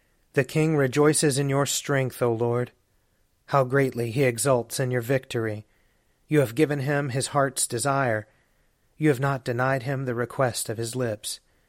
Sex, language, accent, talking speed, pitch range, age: male, English, American, 165 wpm, 115-135 Hz, 30-49